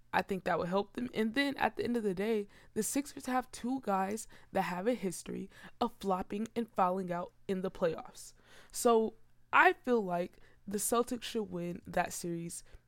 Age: 20-39